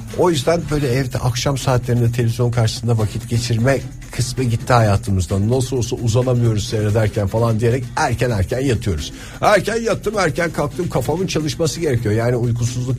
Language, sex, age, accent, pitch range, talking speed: Turkish, male, 50-69, native, 100-125 Hz, 145 wpm